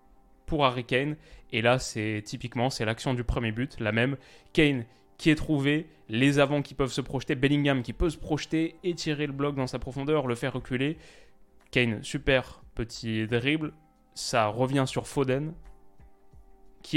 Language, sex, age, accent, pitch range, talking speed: French, male, 20-39, French, 115-135 Hz, 165 wpm